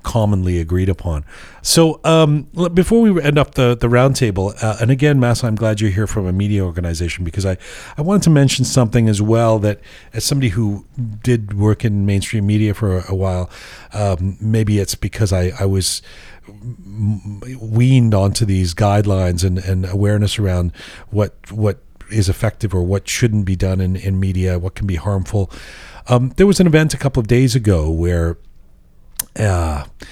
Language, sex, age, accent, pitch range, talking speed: English, male, 40-59, American, 90-115 Hz, 175 wpm